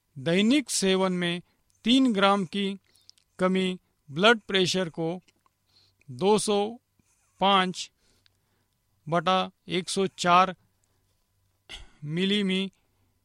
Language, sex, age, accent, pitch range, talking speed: Hindi, male, 50-69, native, 145-200 Hz, 65 wpm